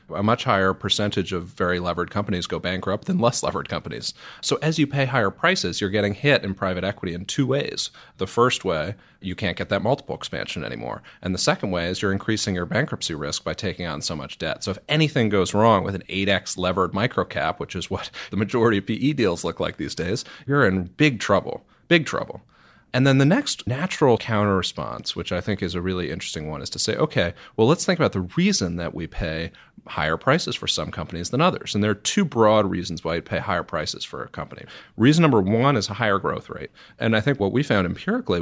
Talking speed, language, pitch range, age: 230 wpm, English, 95-130 Hz, 30-49